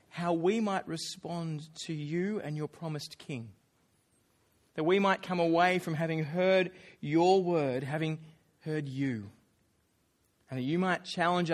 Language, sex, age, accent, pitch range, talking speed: English, male, 20-39, Australian, 150-205 Hz, 145 wpm